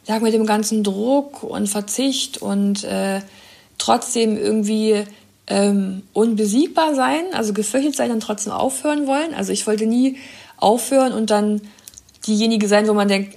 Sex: female